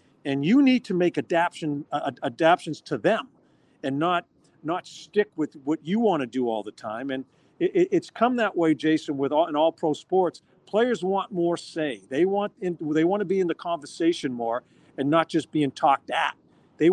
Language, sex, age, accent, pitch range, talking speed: English, male, 50-69, American, 140-175 Hz, 205 wpm